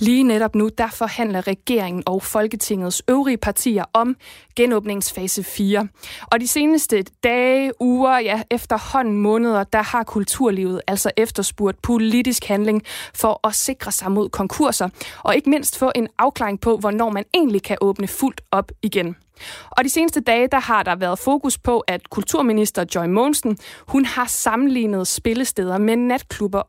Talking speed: 155 wpm